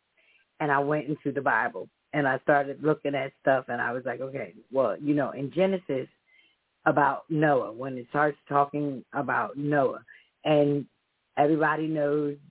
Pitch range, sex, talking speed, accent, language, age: 145-165 Hz, female, 160 wpm, American, English, 40-59